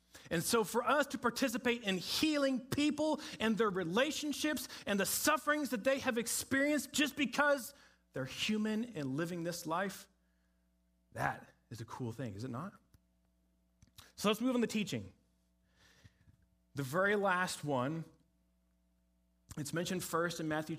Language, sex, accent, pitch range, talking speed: English, male, American, 130-190 Hz, 145 wpm